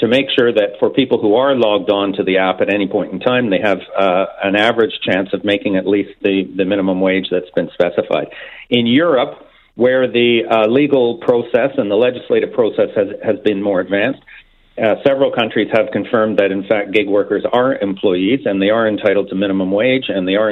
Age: 50-69